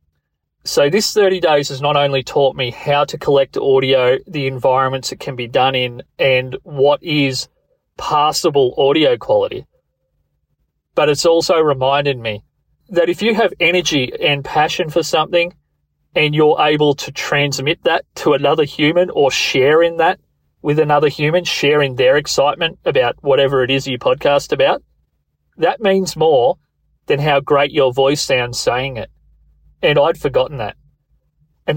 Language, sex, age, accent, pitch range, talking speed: English, male, 30-49, Australian, 130-170 Hz, 155 wpm